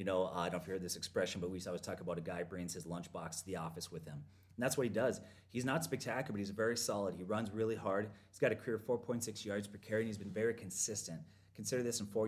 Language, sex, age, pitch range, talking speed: English, male, 30-49, 95-120 Hz, 295 wpm